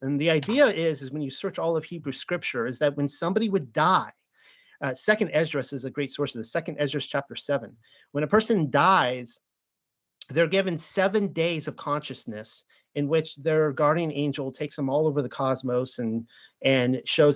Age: 40-59